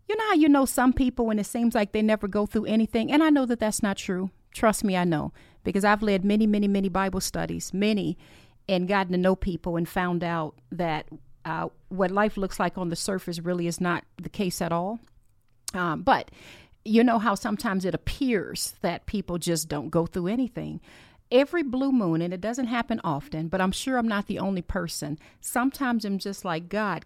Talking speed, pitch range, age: 215 wpm, 165-230 Hz, 40-59